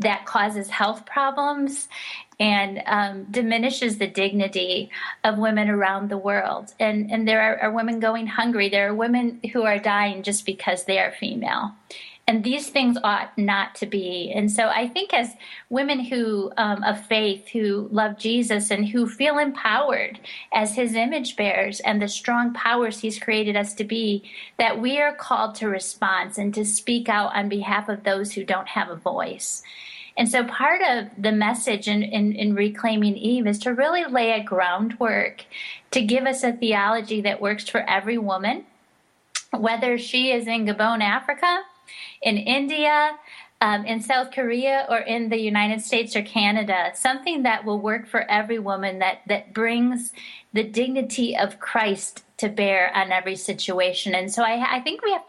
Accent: American